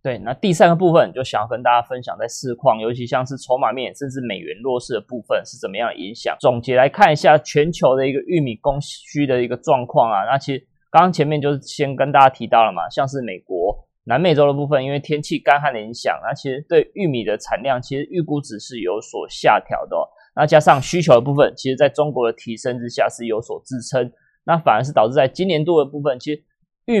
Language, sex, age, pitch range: Chinese, male, 20-39, 125-150 Hz